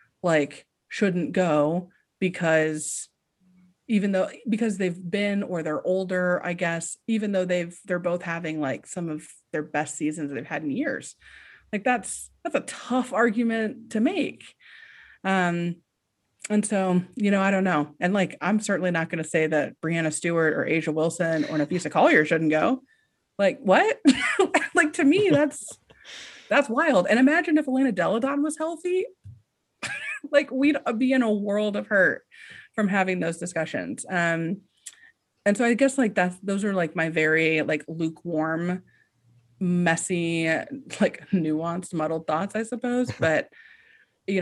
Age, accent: 30-49, American